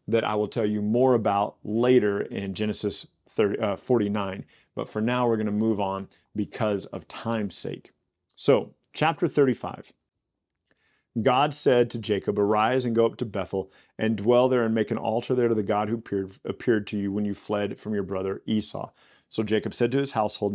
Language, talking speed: English, 195 wpm